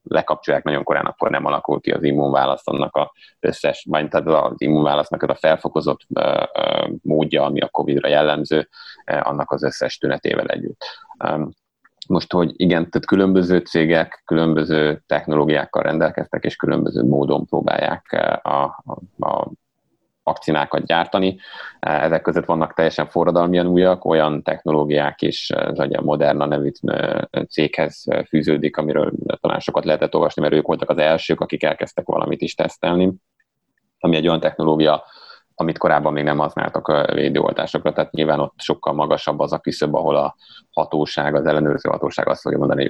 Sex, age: male, 30-49